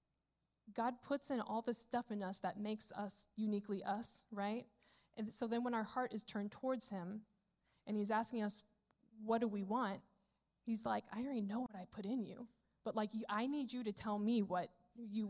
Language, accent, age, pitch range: English, American, 10-29, 200-225 Hz